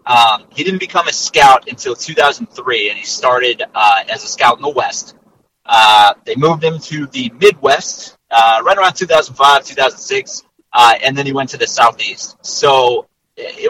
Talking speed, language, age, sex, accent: 175 wpm, English, 30-49, male, American